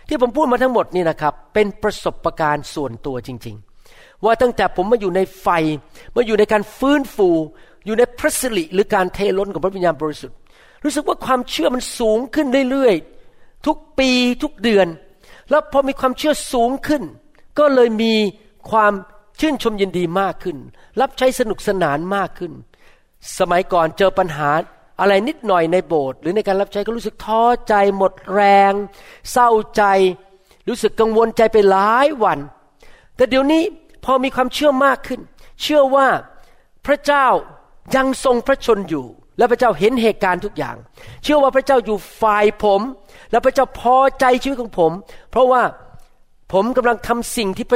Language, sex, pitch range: Thai, male, 190-260 Hz